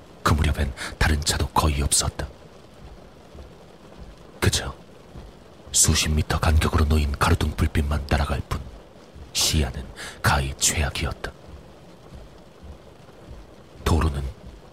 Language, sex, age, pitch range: Korean, male, 40-59, 75-85 Hz